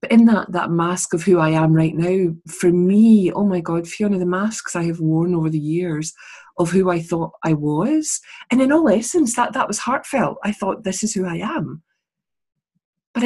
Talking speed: 215 wpm